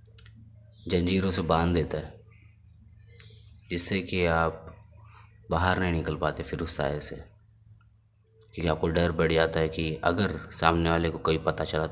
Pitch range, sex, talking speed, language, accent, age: 80-105 Hz, male, 150 wpm, Hindi, native, 20-39